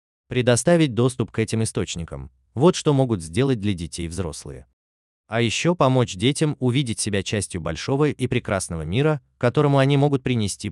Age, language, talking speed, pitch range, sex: 30-49, Russian, 150 wpm, 90-130 Hz, male